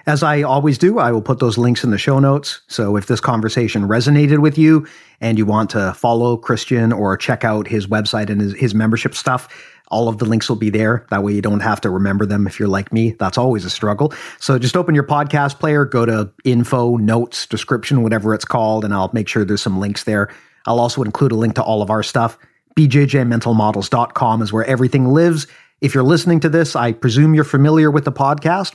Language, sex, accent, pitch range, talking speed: English, male, American, 110-140 Hz, 230 wpm